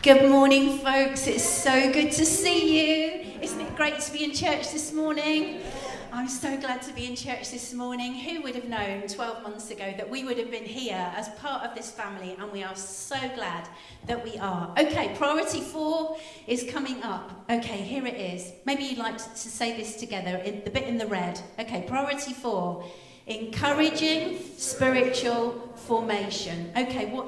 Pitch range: 210-290 Hz